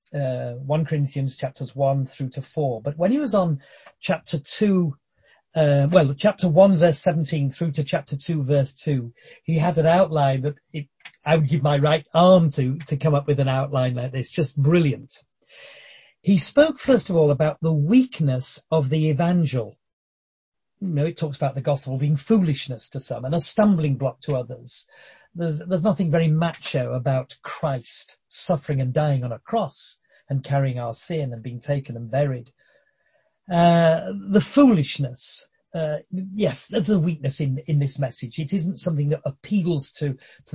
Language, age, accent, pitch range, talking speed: English, 40-59, British, 135-170 Hz, 175 wpm